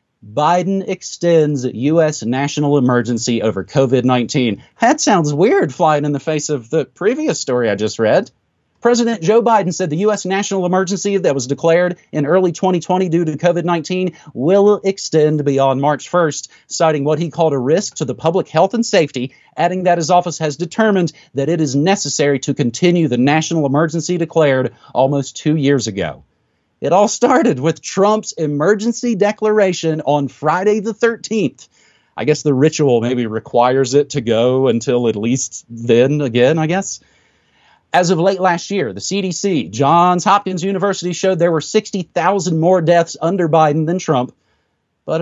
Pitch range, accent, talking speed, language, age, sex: 140-185 Hz, American, 165 wpm, English, 40-59, male